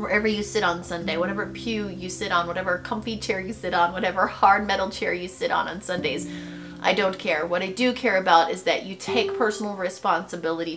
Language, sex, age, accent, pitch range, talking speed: English, female, 30-49, American, 175-240 Hz, 215 wpm